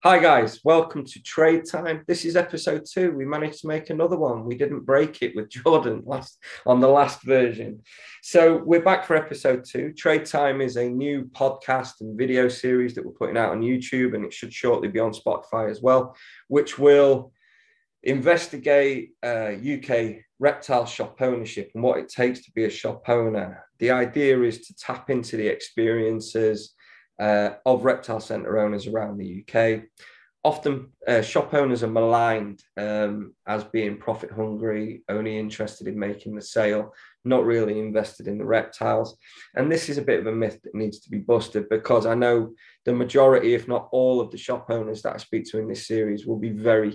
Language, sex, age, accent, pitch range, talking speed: English, male, 20-39, British, 110-140 Hz, 190 wpm